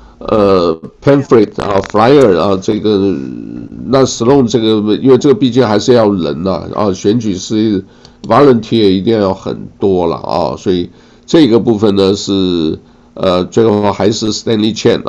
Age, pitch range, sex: 60-79, 95-115 Hz, male